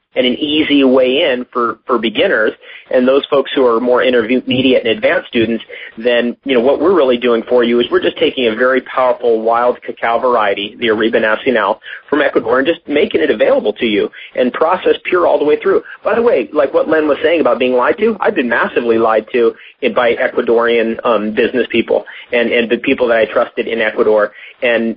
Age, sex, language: 40-59, male, English